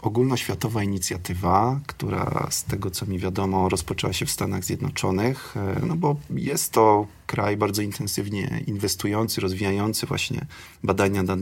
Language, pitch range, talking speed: Polish, 95-120 Hz, 130 wpm